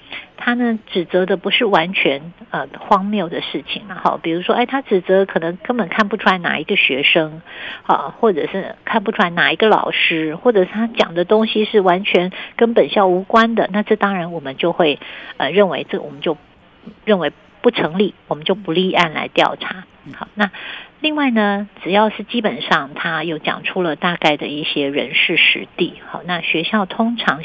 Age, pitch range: 50-69, 165-215 Hz